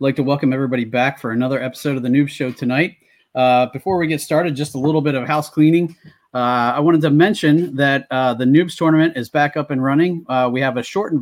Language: English